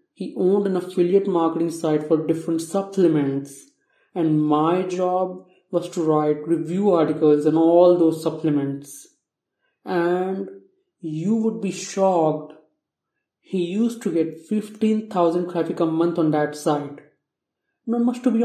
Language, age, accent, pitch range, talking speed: English, 30-49, Indian, 160-195 Hz, 135 wpm